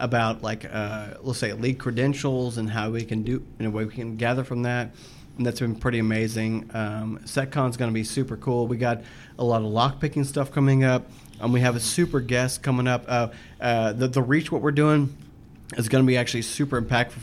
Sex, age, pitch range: male, 30-49, 115-135 Hz